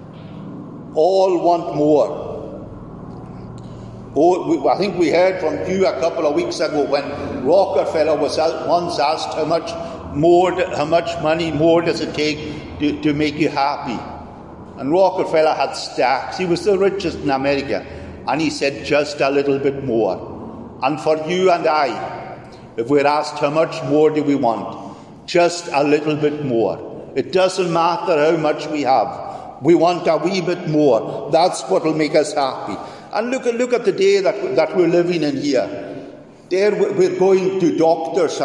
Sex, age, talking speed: male, 60-79, 165 wpm